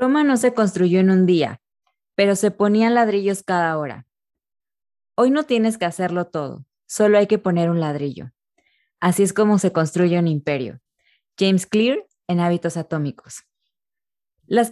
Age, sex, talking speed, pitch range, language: 20-39, female, 155 wpm, 175-220 Hz, Spanish